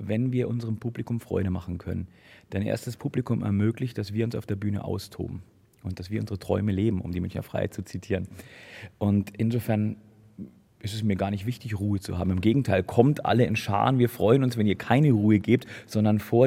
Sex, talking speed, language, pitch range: male, 215 wpm, German, 100-120 Hz